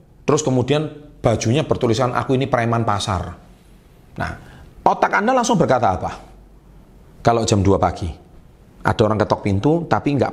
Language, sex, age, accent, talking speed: Indonesian, male, 40-59, native, 140 wpm